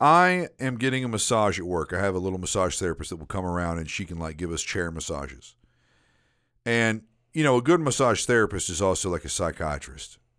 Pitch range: 90-130 Hz